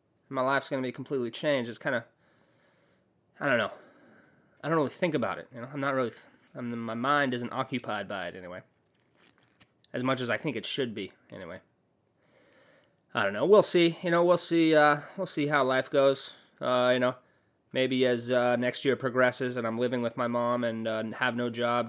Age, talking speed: 20-39, 210 wpm